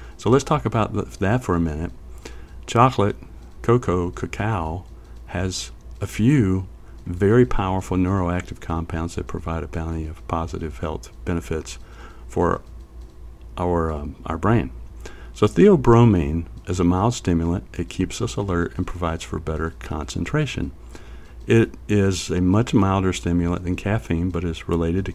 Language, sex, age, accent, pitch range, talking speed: English, male, 50-69, American, 80-100 Hz, 140 wpm